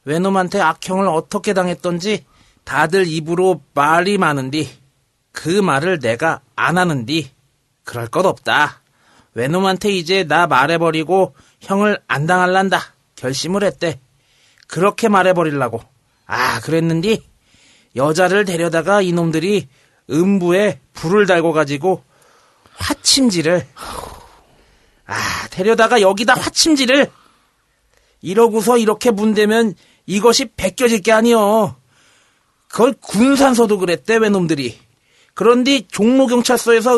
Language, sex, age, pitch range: Korean, male, 40-59, 160-240 Hz